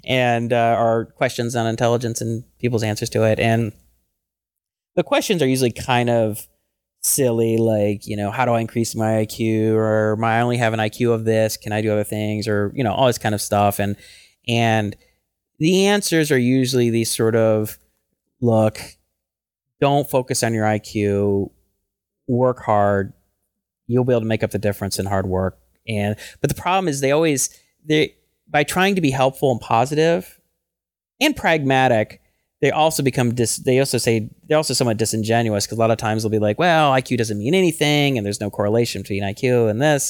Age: 30-49